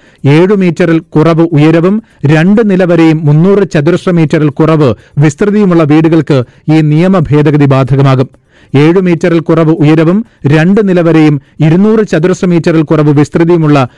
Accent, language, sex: native, Malayalam, male